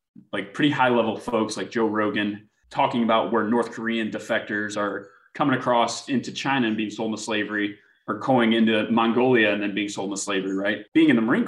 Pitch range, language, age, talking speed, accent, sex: 105-120 Hz, English, 20-39, 205 wpm, American, male